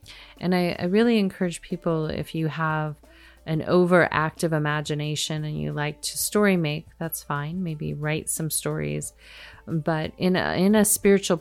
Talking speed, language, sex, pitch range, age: 160 wpm, English, female, 150-175 Hz, 30-49